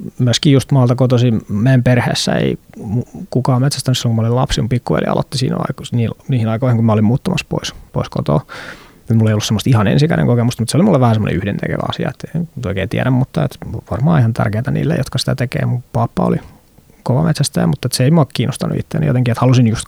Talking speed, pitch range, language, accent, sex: 205 wpm, 120-145 Hz, Finnish, native, male